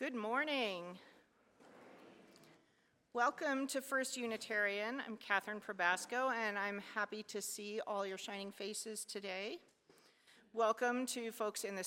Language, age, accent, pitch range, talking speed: English, 40-59, American, 190-235 Hz, 120 wpm